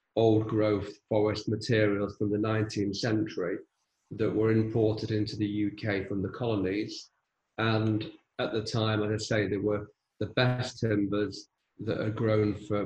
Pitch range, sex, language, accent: 105-115 Hz, male, English, British